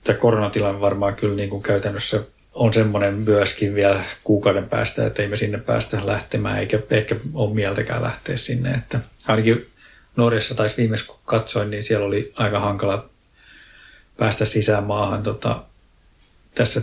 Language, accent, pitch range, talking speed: Finnish, native, 105-120 Hz, 145 wpm